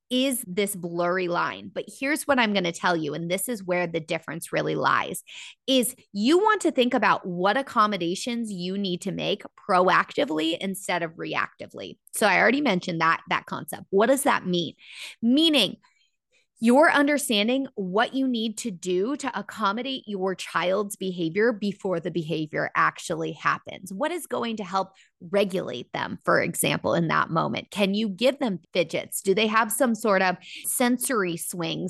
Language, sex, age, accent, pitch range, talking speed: English, female, 20-39, American, 185-250 Hz, 170 wpm